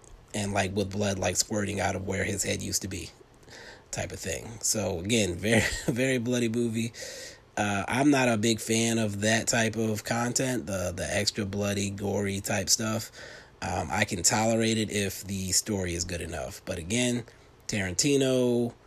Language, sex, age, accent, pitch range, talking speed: English, male, 30-49, American, 100-115 Hz, 175 wpm